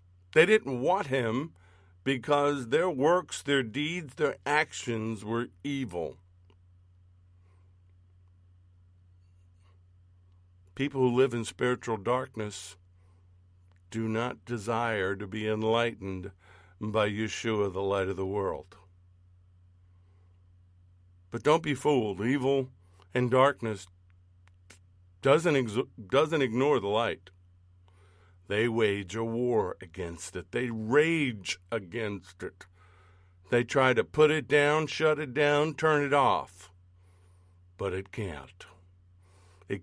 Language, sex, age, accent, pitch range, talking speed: English, male, 60-79, American, 90-115 Hz, 105 wpm